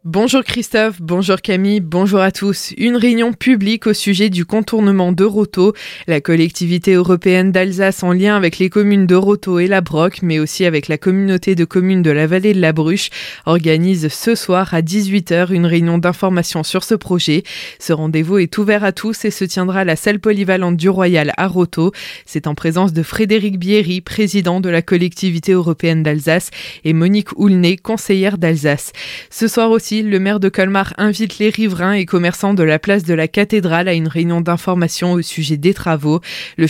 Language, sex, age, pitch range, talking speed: French, female, 20-39, 165-200 Hz, 190 wpm